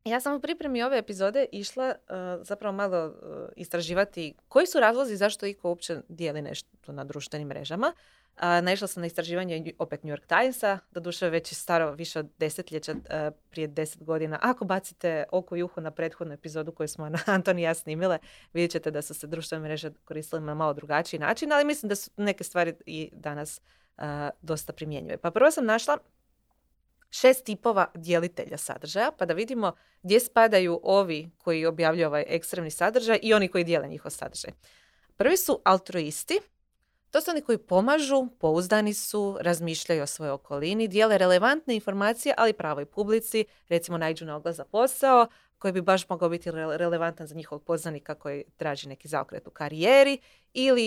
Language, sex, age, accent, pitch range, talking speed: Croatian, female, 30-49, native, 155-205 Hz, 175 wpm